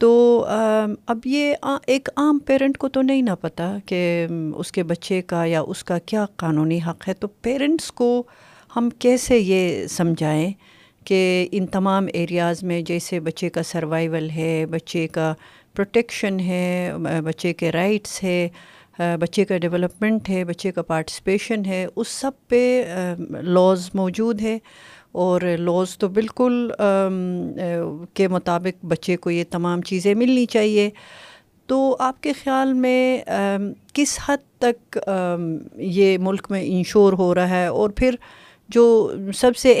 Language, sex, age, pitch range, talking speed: Urdu, female, 50-69, 175-230 Hz, 145 wpm